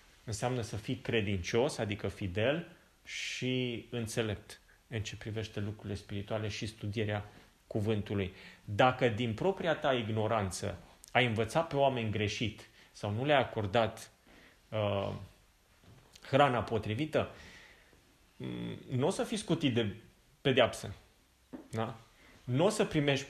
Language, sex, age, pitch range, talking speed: Romanian, male, 30-49, 105-130 Hz, 115 wpm